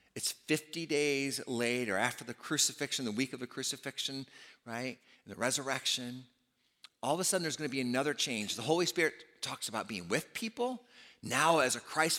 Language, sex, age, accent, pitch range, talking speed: English, male, 50-69, American, 125-195 Hz, 180 wpm